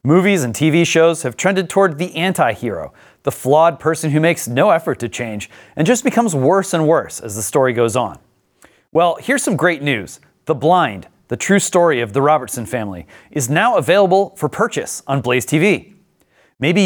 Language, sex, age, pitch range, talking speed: English, male, 30-49, 135-170 Hz, 185 wpm